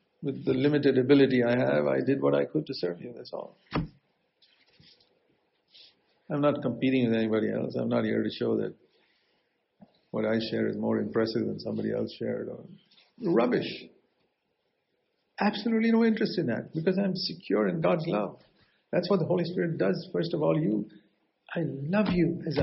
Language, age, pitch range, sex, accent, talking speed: English, 50-69, 130-180 Hz, male, Indian, 170 wpm